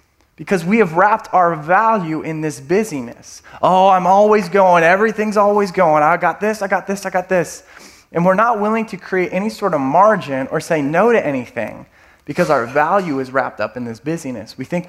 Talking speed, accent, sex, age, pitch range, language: 205 wpm, American, male, 20-39, 130-175 Hz, English